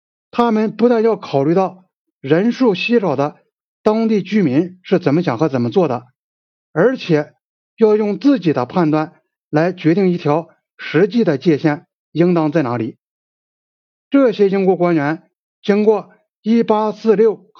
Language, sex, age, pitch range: Chinese, male, 60-79, 155-220 Hz